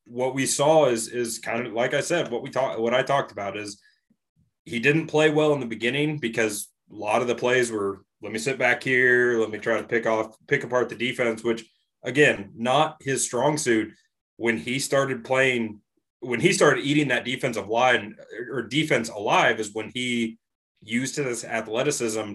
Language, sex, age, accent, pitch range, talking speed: English, male, 30-49, American, 110-140 Hz, 195 wpm